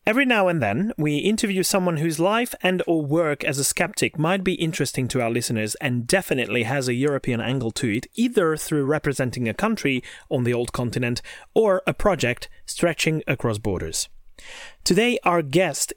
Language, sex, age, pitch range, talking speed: English, male, 30-49, 125-175 Hz, 175 wpm